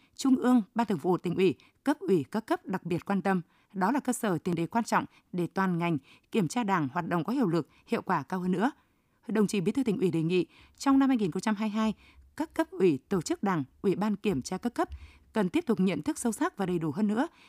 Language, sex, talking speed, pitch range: Vietnamese, female, 265 wpm, 180-245 Hz